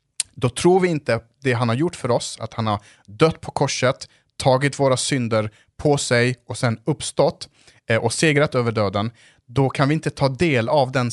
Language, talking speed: Swedish, 195 wpm